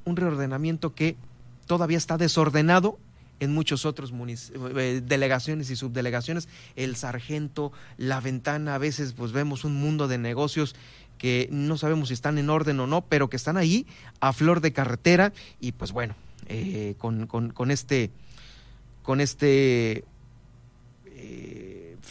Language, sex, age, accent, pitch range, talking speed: Spanish, male, 30-49, Mexican, 125-165 Hz, 145 wpm